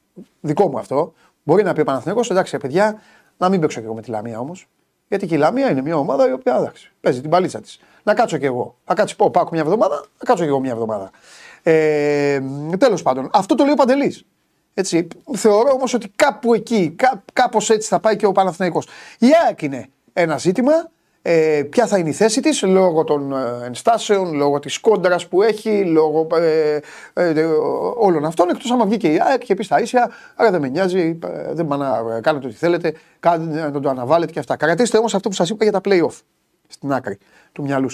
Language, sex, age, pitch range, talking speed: Greek, male, 30-49, 145-220 Hz, 205 wpm